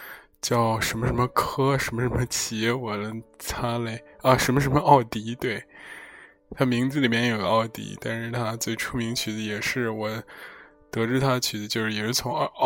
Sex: male